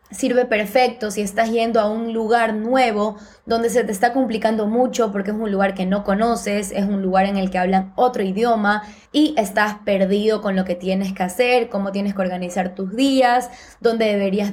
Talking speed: 200 wpm